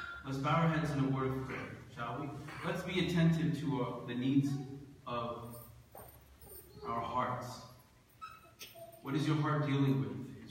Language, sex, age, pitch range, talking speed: English, male, 30-49, 130-150 Hz, 160 wpm